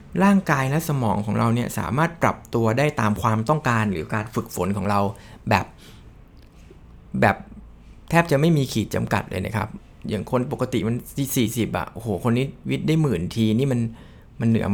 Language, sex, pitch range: Thai, male, 110-145 Hz